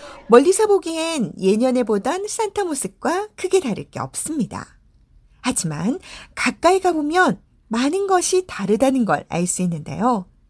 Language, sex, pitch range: Korean, female, 200-315 Hz